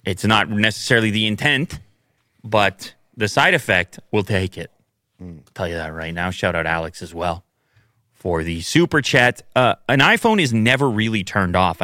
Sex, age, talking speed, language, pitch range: male, 30-49, 180 wpm, English, 100-125 Hz